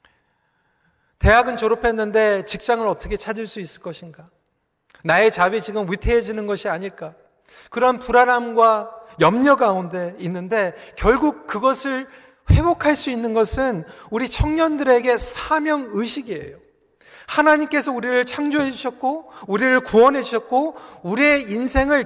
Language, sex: Korean, male